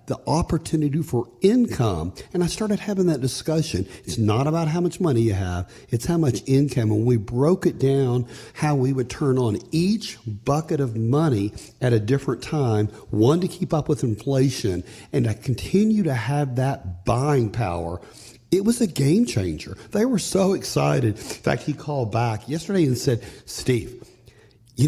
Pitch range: 115-160 Hz